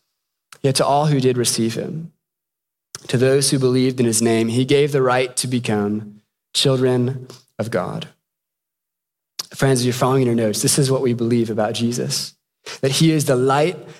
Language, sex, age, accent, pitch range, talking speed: English, male, 20-39, American, 130-170 Hz, 175 wpm